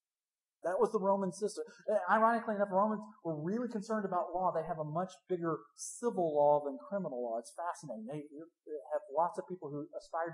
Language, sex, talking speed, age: English, male, 185 wpm, 40-59